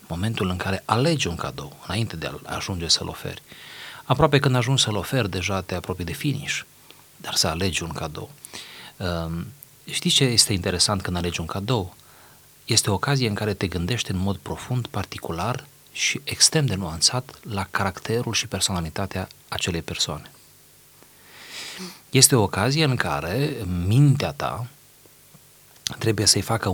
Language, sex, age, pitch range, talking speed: Romanian, male, 40-59, 90-125 Hz, 150 wpm